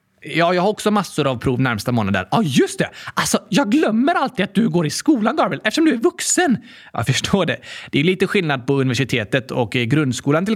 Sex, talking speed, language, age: male, 235 wpm, Swedish, 20-39